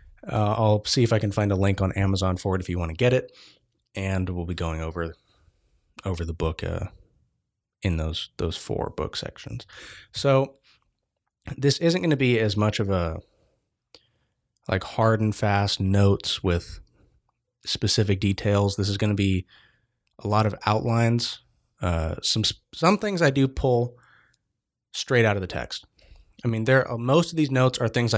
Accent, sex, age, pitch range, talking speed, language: American, male, 20-39, 95-120 Hz, 175 wpm, English